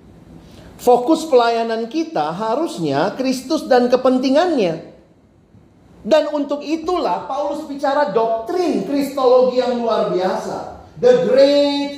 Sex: male